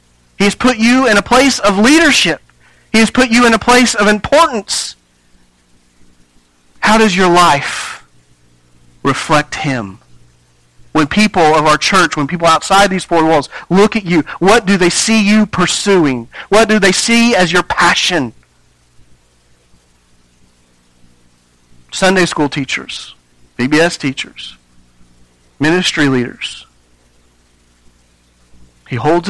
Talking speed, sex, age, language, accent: 125 wpm, male, 40-59, English, American